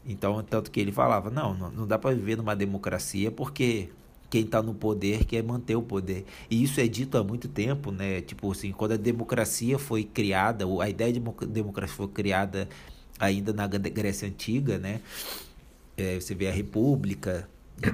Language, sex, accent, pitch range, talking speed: Portuguese, male, Brazilian, 95-115 Hz, 175 wpm